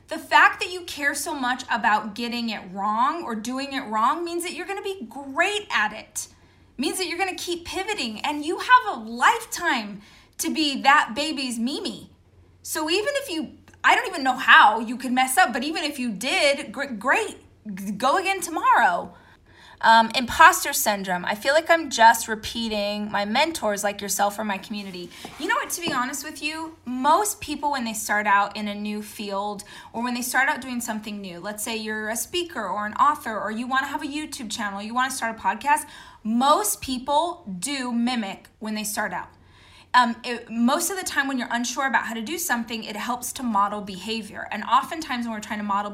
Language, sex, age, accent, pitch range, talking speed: English, female, 20-39, American, 220-305 Hz, 210 wpm